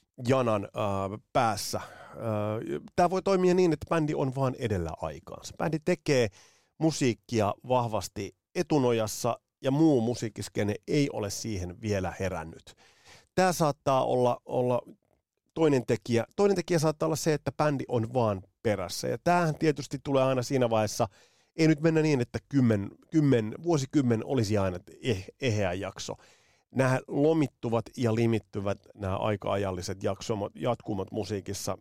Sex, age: male, 30-49